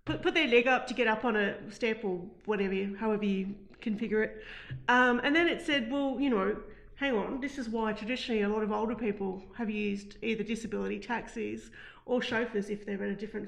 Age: 40-59